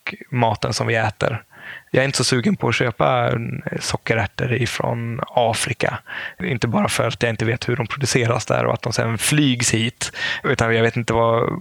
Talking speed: 190 wpm